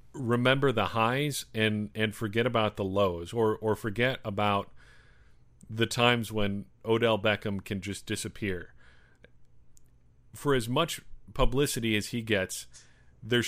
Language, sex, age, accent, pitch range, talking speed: English, male, 40-59, American, 100-120 Hz, 130 wpm